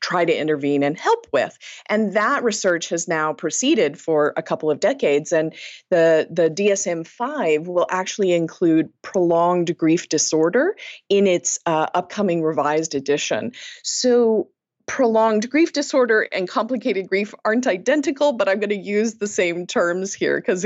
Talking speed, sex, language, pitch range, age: 150 wpm, female, English, 175-270 Hz, 30-49